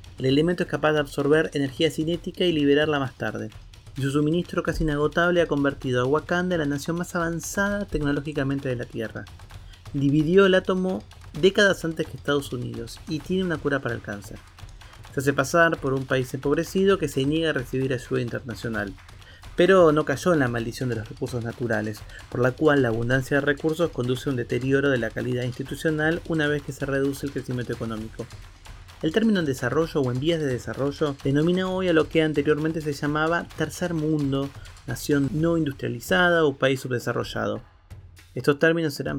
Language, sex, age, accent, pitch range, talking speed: Spanish, male, 30-49, Argentinian, 120-160 Hz, 180 wpm